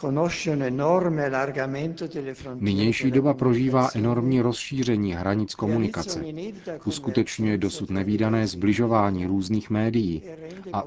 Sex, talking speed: male, 75 wpm